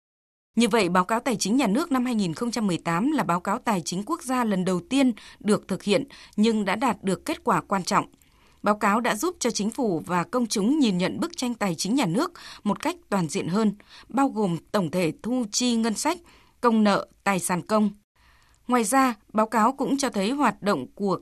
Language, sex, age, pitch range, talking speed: Vietnamese, female, 20-39, 195-260 Hz, 220 wpm